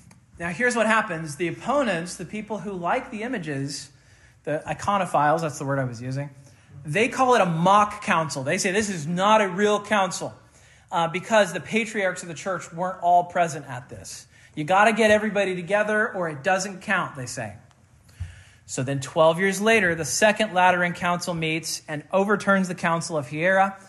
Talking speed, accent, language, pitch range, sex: 185 wpm, American, English, 145-200 Hz, male